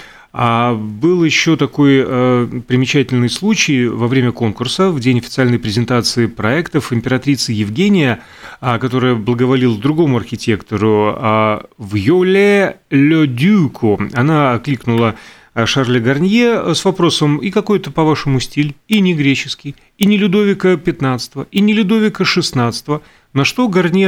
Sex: male